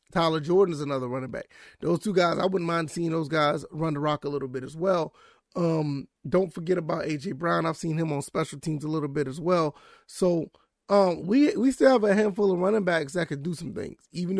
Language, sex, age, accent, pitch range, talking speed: English, male, 30-49, American, 150-175 Hz, 240 wpm